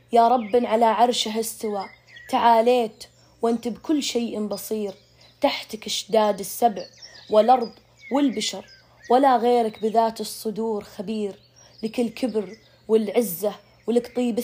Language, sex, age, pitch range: Arabic, female, 20-39, 215-250 Hz